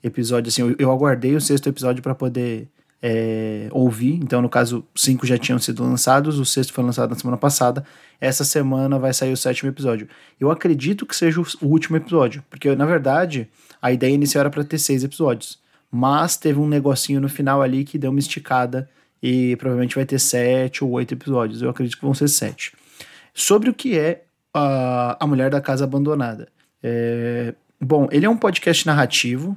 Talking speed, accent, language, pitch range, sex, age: 185 wpm, Brazilian, Portuguese, 125-145 Hz, male, 20-39